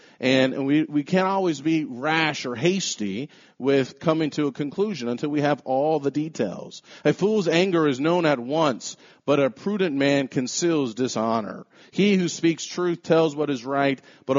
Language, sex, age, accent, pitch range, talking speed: English, male, 40-59, American, 135-180 Hz, 175 wpm